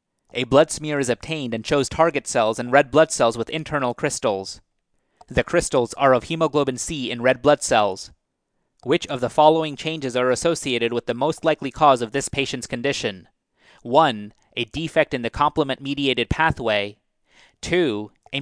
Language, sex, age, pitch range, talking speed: English, male, 30-49, 120-155 Hz, 165 wpm